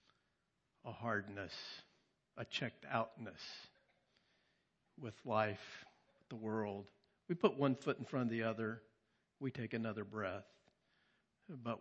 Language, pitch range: English, 110-140 Hz